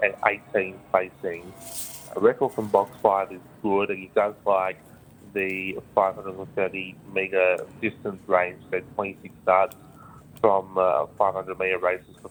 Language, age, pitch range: English, 20-39, 95-110 Hz